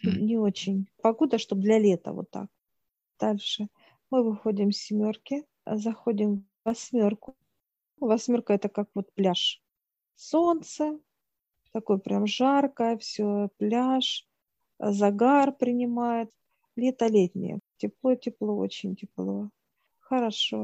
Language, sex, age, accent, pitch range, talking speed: Russian, female, 40-59, native, 205-230 Hz, 95 wpm